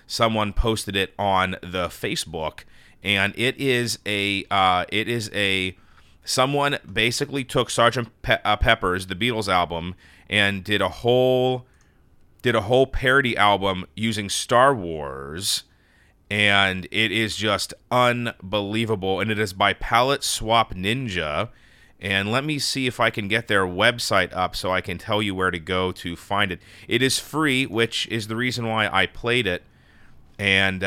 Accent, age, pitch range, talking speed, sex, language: American, 30-49, 95-120 Hz, 160 wpm, male, English